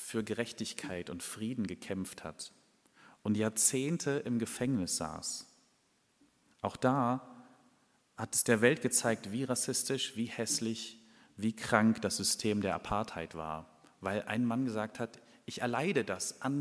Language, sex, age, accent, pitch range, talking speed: German, male, 40-59, German, 100-120 Hz, 135 wpm